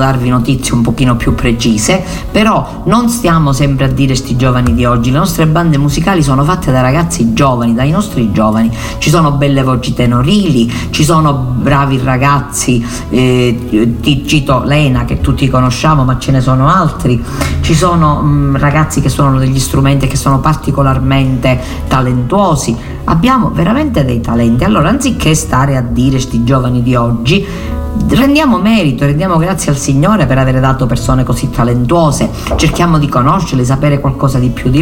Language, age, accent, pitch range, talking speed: Italian, 50-69, native, 120-145 Hz, 165 wpm